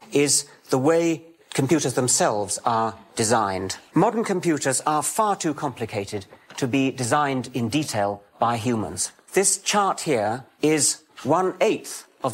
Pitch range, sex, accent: 115-150 Hz, male, British